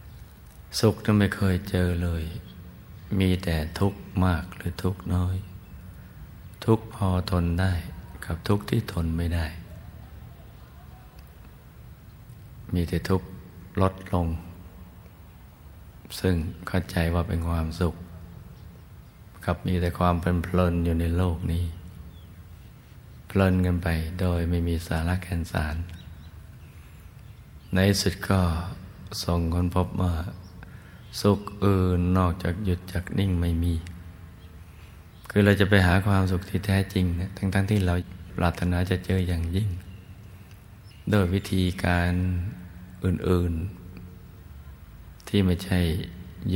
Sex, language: male, Thai